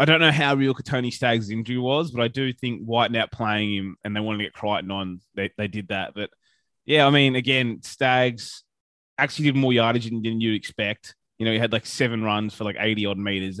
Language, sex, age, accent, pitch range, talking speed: English, male, 20-39, Australian, 100-125 Hz, 230 wpm